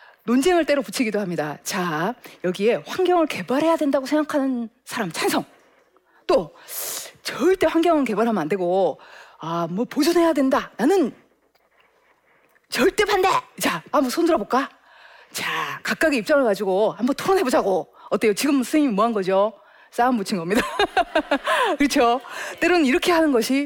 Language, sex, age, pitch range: Korean, female, 40-59, 200-315 Hz